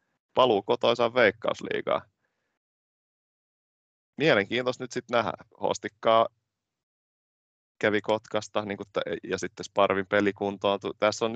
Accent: native